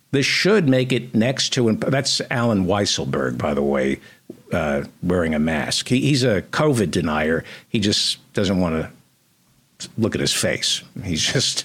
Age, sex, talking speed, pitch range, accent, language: 60-79, male, 170 wpm, 105-145 Hz, American, English